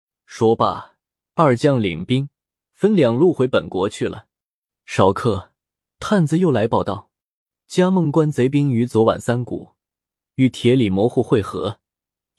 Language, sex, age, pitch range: Chinese, male, 20-39, 110-150 Hz